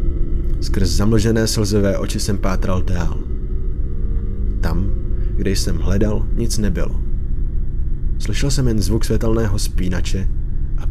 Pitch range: 80-105 Hz